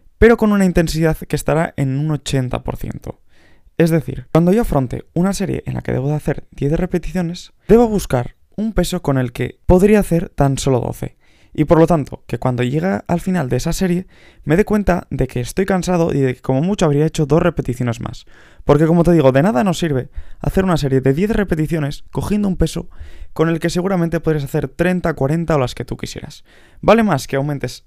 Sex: male